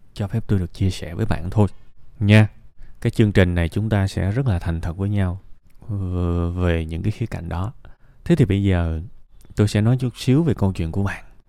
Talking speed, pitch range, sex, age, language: 225 wpm, 90-115 Hz, male, 20-39, Vietnamese